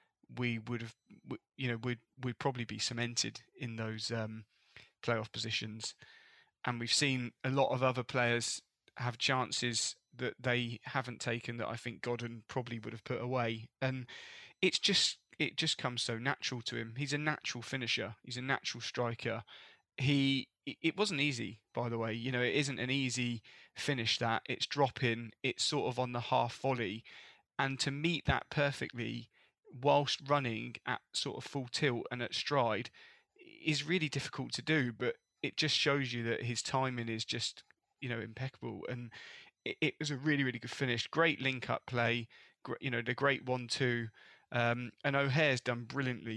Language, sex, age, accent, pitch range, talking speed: English, male, 20-39, British, 120-140 Hz, 175 wpm